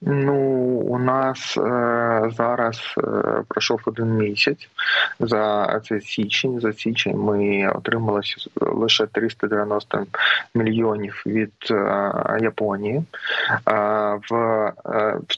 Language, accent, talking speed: Ukrainian, native, 100 wpm